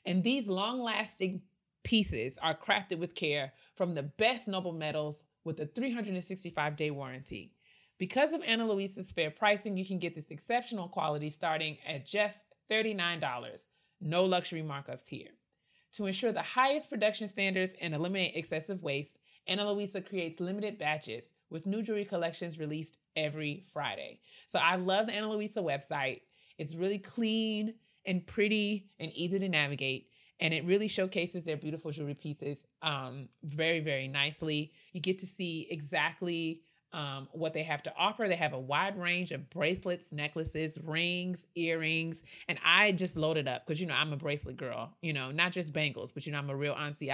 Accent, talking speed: American, 170 wpm